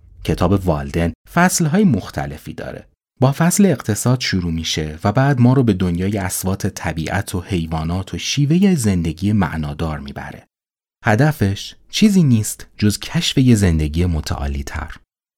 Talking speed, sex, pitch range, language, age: 135 wpm, male, 80-115 Hz, Persian, 30-49